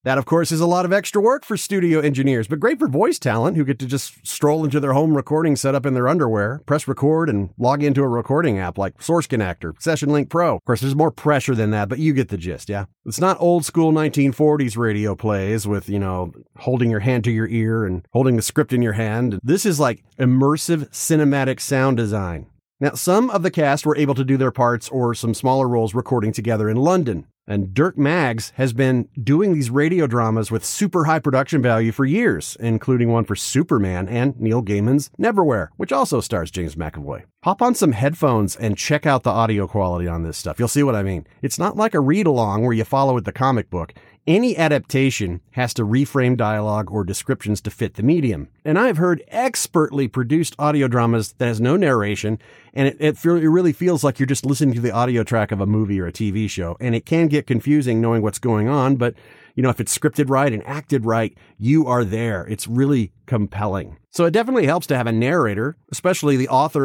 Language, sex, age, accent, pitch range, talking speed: English, male, 30-49, American, 110-150 Hz, 220 wpm